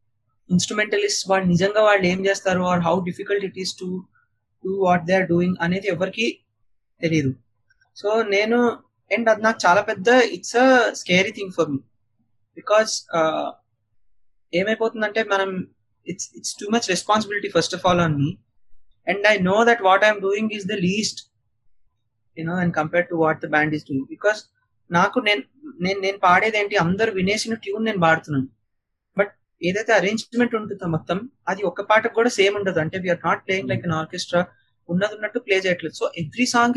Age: 30-49